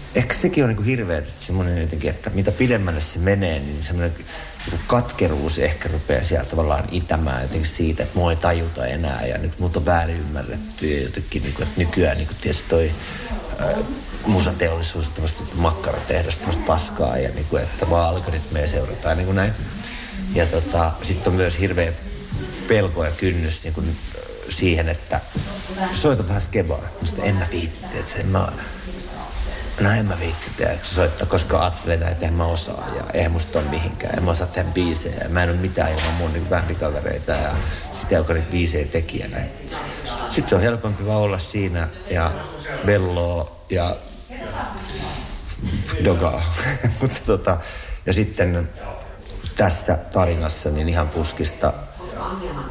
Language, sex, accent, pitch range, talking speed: Finnish, male, native, 80-95 Hz, 135 wpm